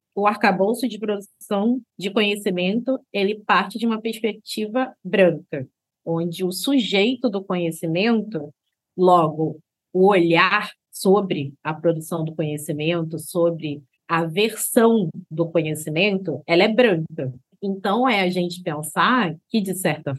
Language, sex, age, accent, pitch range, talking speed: Portuguese, female, 20-39, Brazilian, 170-225 Hz, 120 wpm